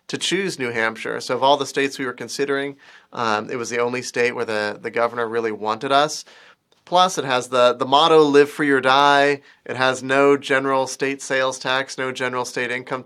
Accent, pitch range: American, 125-145 Hz